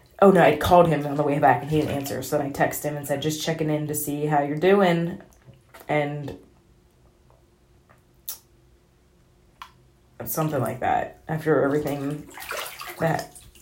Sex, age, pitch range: female, 30-49, 135-160 Hz